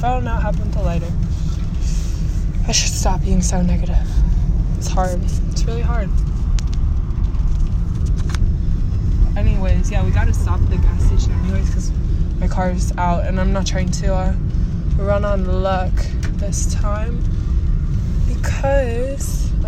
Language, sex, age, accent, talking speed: English, female, 20-39, American, 130 wpm